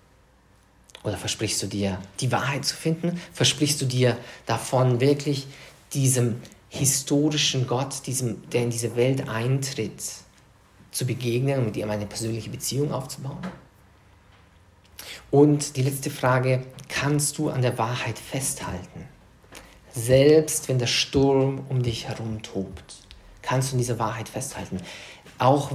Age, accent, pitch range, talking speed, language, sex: 50-69, German, 110-135 Hz, 135 wpm, English, male